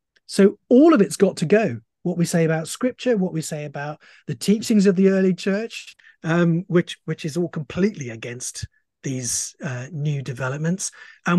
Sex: male